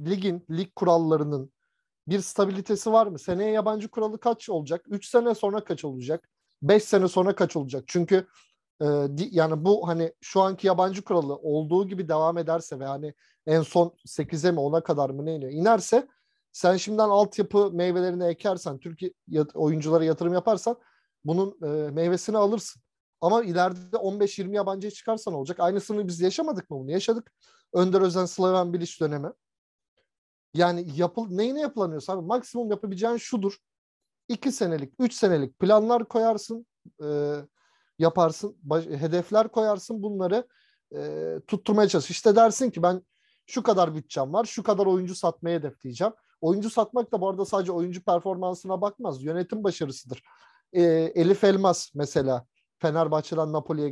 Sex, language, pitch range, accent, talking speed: male, Turkish, 165-210 Hz, native, 145 wpm